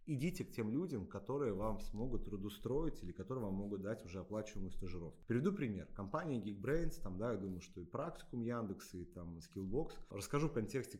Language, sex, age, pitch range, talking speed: Russian, male, 30-49, 100-140 Hz, 185 wpm